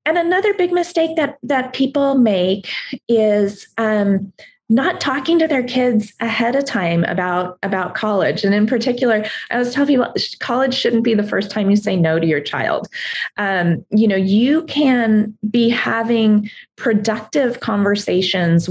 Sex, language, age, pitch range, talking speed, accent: female, English, 30-49, 180-235 Hz, 155 wpm, American